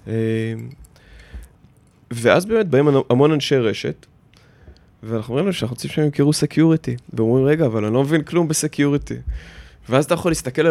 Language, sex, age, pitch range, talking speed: Hebrew, male, 20-39, 120-150 Hz, 145 wpm